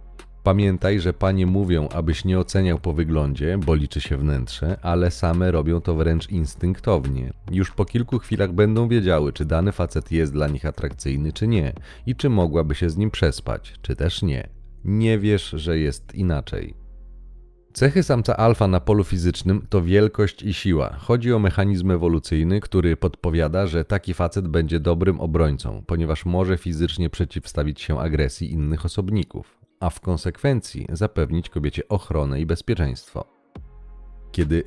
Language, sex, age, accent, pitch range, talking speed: Polish, male, 30-49, native, 80-95 Hz, 150 wpm